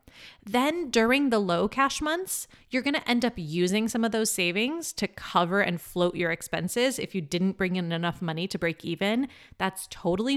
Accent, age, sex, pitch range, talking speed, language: American, 30-49, female, 175-235 Hz, 195 wpm, English